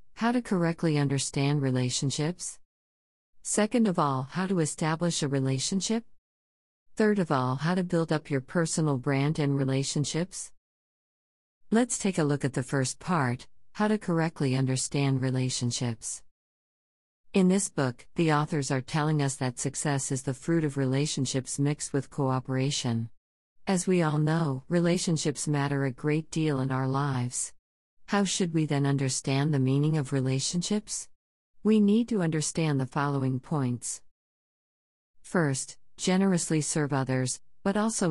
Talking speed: 140 wpm